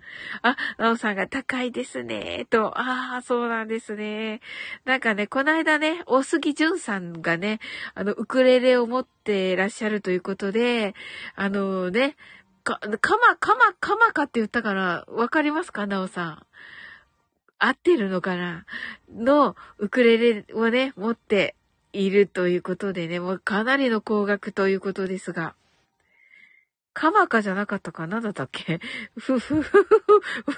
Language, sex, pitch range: Japanese, female, 200-295 Hz